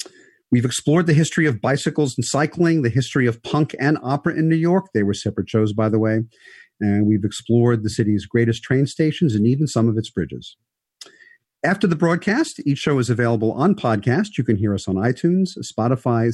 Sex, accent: male, American